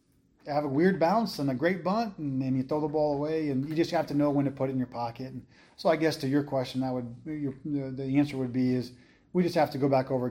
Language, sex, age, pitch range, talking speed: English, male, 30-49, 125-145 Hz, 290 wpm